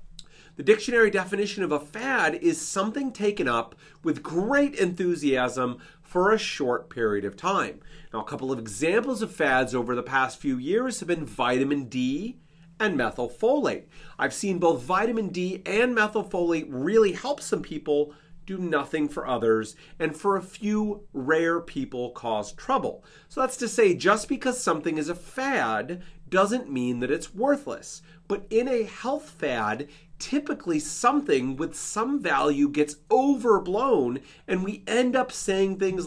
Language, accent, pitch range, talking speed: English, American, 145-215 Hz, 155 wpm